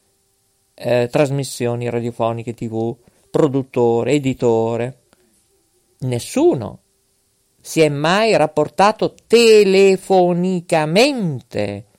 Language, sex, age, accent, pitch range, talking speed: Italian, male, 50-69, native, 115-175 Hz, 60 wpm